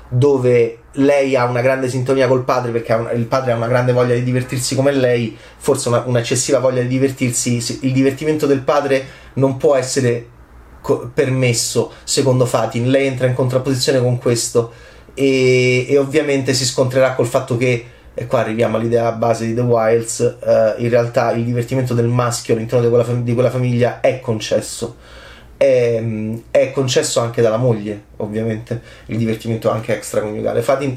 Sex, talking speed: male, 155 wpm